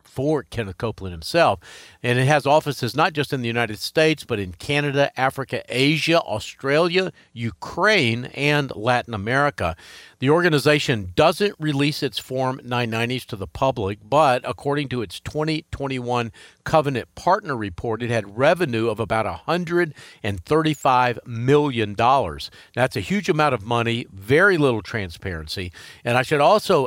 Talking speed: 140 wpm